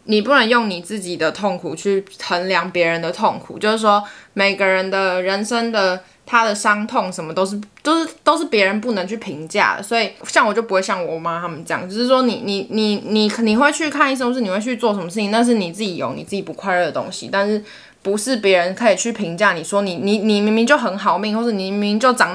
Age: 10-29